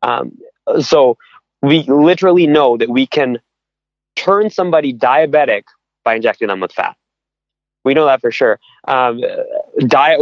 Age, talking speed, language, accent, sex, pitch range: 20-39, 135 wpm, English, American, male, 120-160 Hz